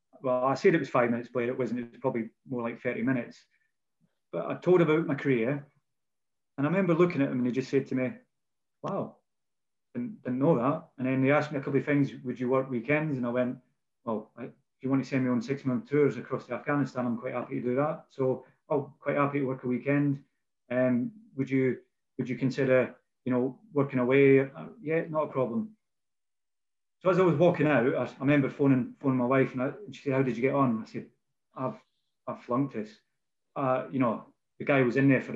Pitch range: 125-145 Hz